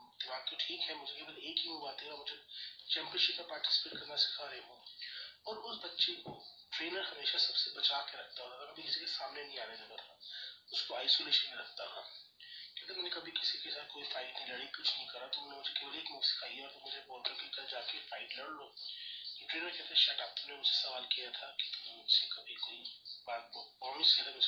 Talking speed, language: 70 wpm, Hindi